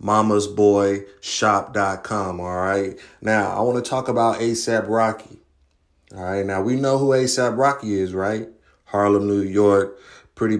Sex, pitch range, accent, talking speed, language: male, 100-115 Hz, American, 155 wpm, English